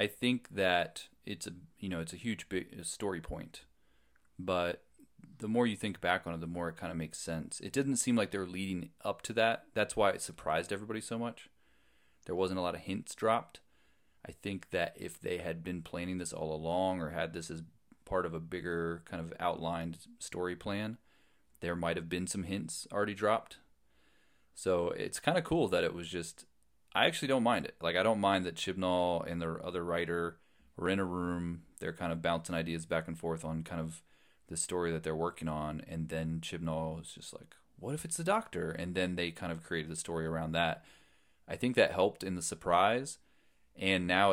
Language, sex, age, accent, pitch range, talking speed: English, male, 30-49, American, 80-95 Hz, 215 wpm